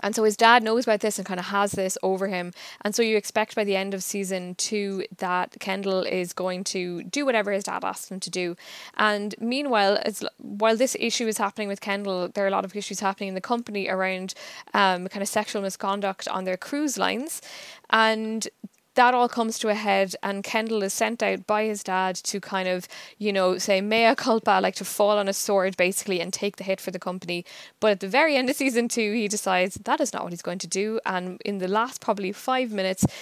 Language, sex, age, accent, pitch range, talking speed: English, female, 10-29, Irish, 185-215 Hz, 235 wpm